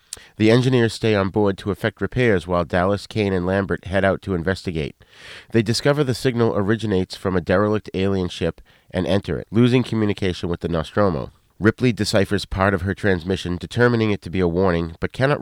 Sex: male